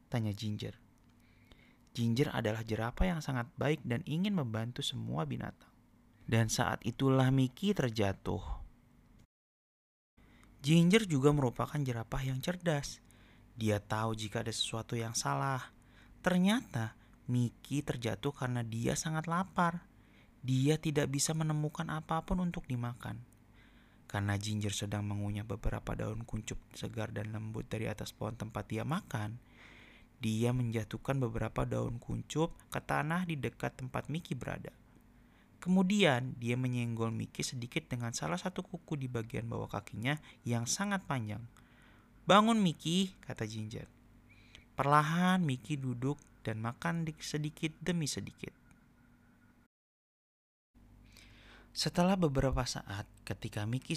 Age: 30-49